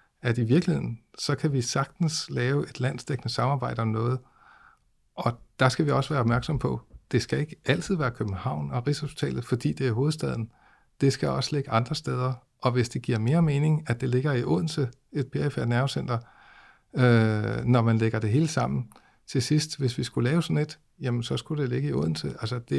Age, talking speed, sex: 50-69, 205 wpm, male